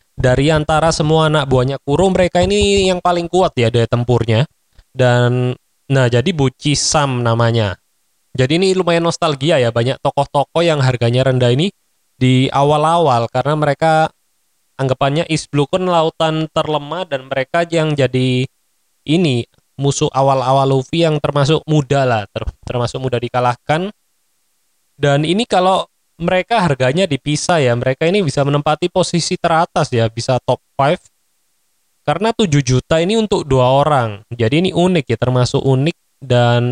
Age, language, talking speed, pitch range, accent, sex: 20-39, Indonesian, 140 wpm, 125-165 Hz, native, male